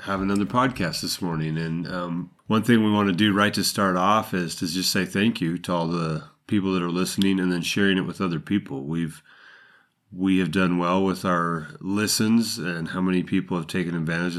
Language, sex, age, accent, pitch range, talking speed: English, male, 30-49, American, 85-100 Hz, 215 wpm